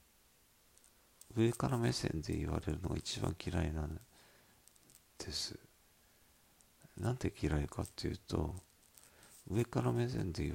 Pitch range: 80-100 Hz